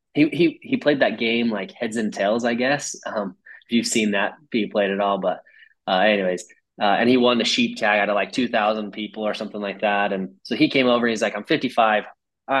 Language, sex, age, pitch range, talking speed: English, male, 20-39, 105-125 Hz, 240 wpm